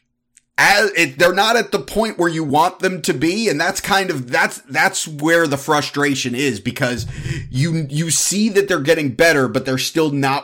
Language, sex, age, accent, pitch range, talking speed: English, male, 30-49, American, 130-175 Hz, 195 wpm